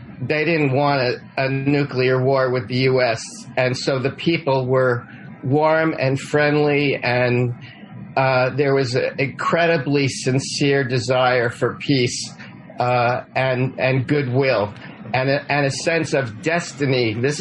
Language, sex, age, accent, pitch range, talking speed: English, male, 40-59, American, 130-150 Hz, 140 wpm